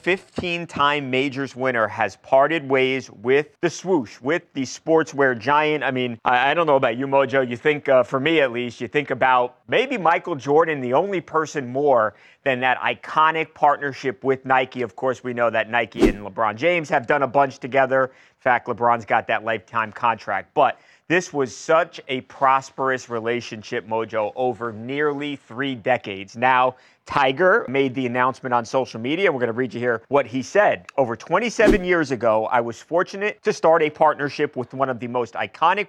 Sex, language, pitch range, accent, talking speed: male, English, 125-160 Hz, American, 185 wpm